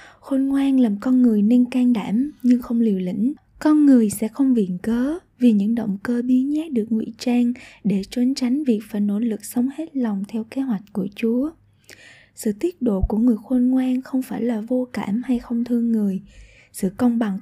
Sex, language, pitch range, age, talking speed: female, Vietnamese, 215-255 Hz, 20-39, 210 wpm